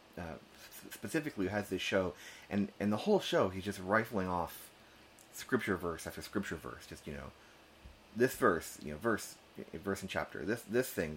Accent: American